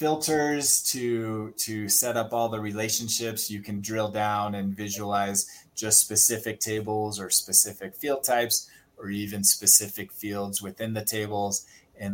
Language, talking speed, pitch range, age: English, 145 wpm, 100-115 Hz, 20-39